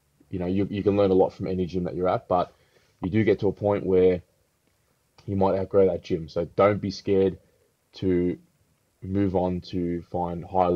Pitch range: 90-100 Hz